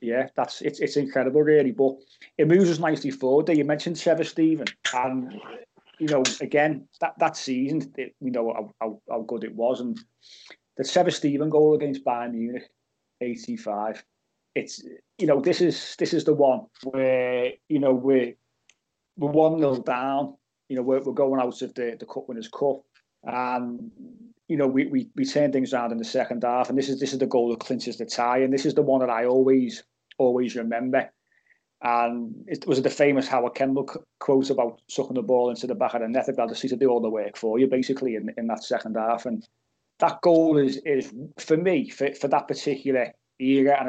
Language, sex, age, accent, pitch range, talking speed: English, male, 30-49, British, 120-150 Hz, 205 wpm